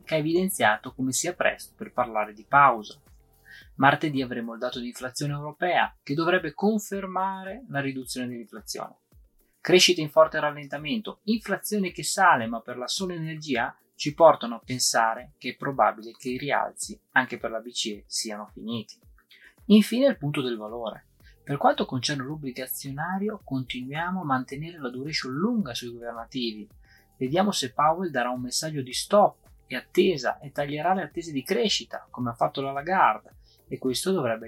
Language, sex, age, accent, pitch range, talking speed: Italian, male, 20-39, native, 120-160 Hz, 160 wpm